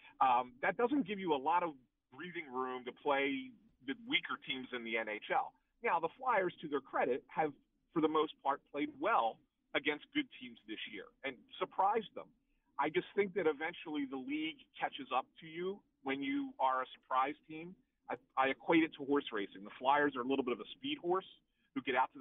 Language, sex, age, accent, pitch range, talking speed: English, male, 40-59, American, 125-175 Hz, 210 wpm